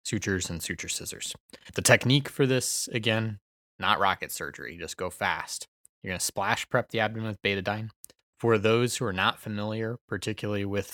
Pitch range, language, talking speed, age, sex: 90-105 Hz, English, 175 wpm, 20-39, male